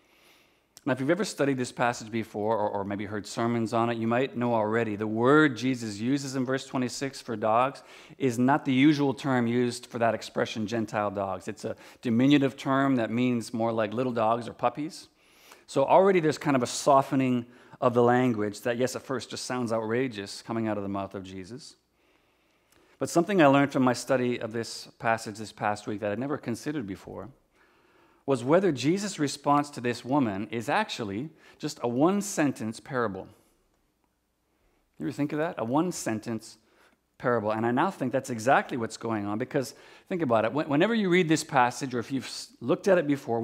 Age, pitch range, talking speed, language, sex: 40-59, 115-145 Hz, 190 wpm, English, male